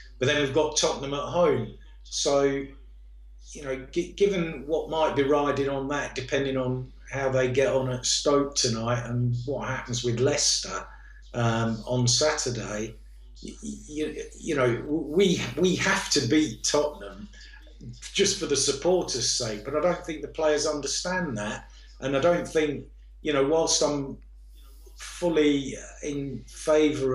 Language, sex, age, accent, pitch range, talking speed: English, male, 50-69, British, 125-150 Hz, 150 wpm